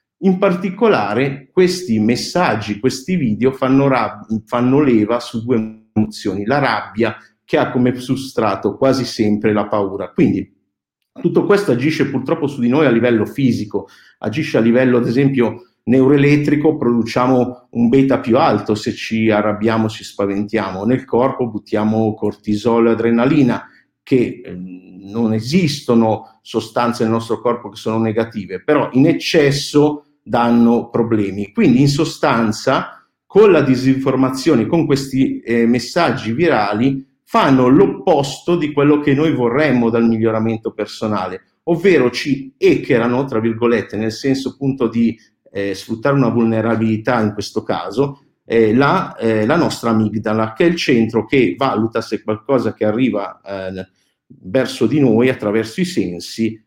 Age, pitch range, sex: 50-69, 110-135 Hz, male